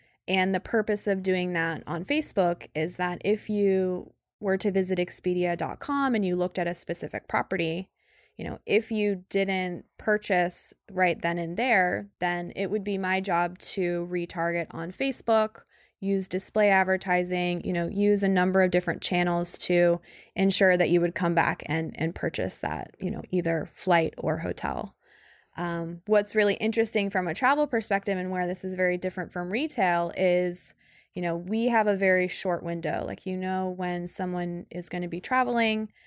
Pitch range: 175-195 Hz